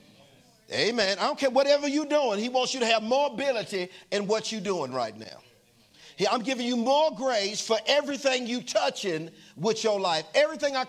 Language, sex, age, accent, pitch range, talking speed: English, male, 50-69, American, 210-280 Hz, 185 wpm